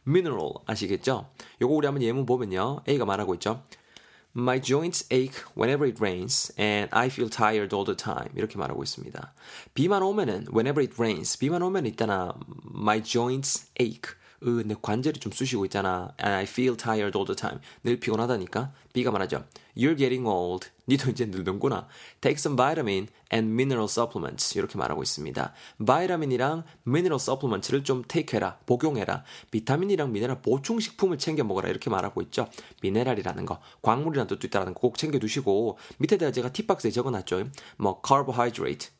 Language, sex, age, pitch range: Korean, male, 20-39, 105-140 Hz